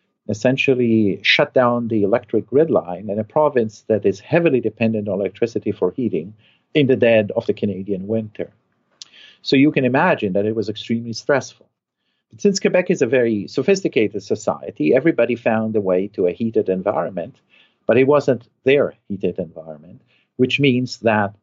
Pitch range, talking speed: 105-140 Hz, 165 wpm